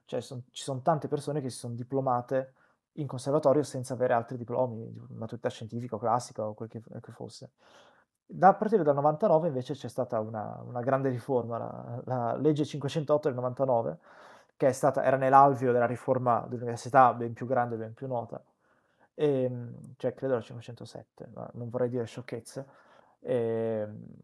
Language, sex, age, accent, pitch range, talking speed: Italian, male, 20-39, native, 120-145 Hz, 175 wpm